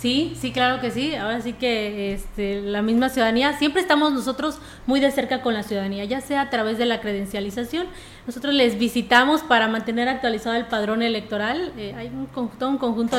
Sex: female